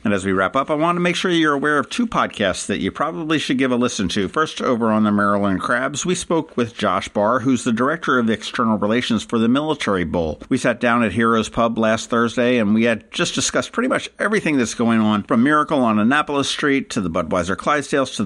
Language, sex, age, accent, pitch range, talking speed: English, male, 50-69, American, 95-130 Hz, 240 wpm